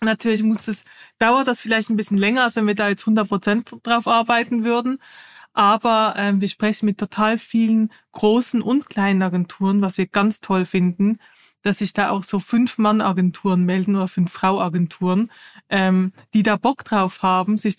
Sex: female